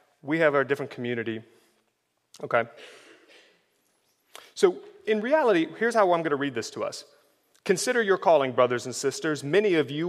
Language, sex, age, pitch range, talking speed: English, male, 30-49, 135-210 Hz, 160 wpm